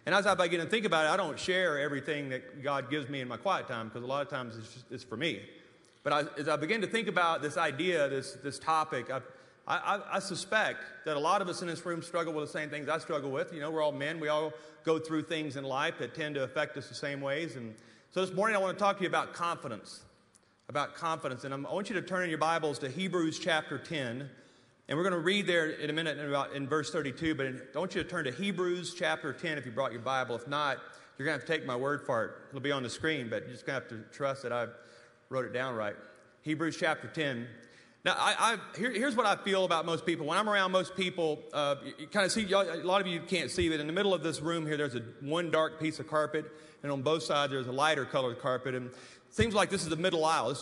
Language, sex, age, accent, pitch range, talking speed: English, male, 40-59, American, 135-170 Hz, 270 wpm